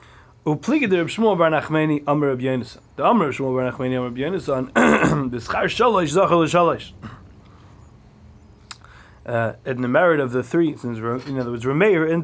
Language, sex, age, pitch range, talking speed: English, male, 30-49, 115-155 Hz, 65 wpm